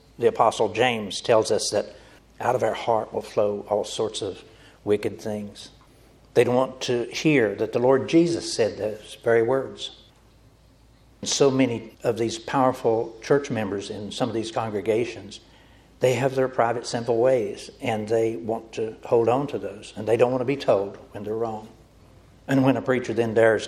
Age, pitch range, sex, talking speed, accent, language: 60-79, 110-130 Hz, male, 180 wpm, American, English